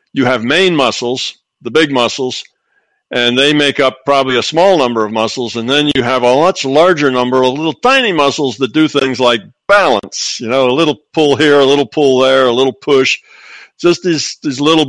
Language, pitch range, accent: English, 120-145 Hz, American